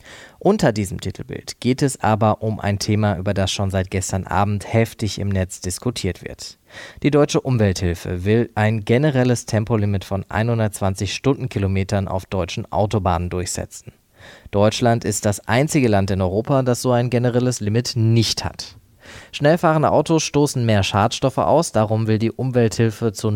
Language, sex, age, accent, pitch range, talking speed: German, male, 20-39, German, 100-120 Hz, 150 wpm